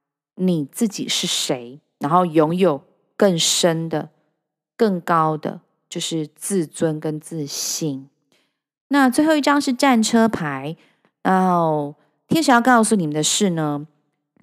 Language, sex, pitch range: Chinese, female, 160-220 Hz